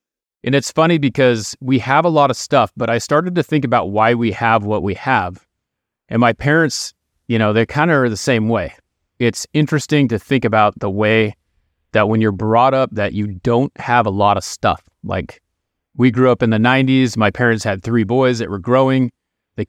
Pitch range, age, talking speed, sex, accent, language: 105-125 Hz, 30-49, 215 wpm, male, American, English